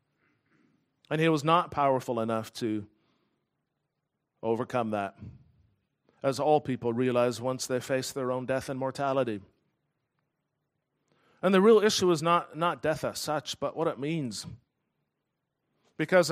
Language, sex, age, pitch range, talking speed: English, male, 40-59, 130-175 Hz, 130 wpm